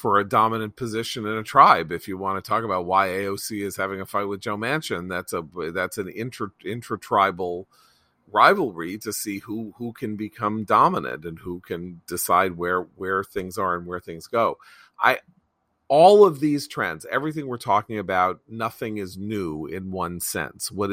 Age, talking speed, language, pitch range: 40-59, 185 wpm, English, 95-115 Hz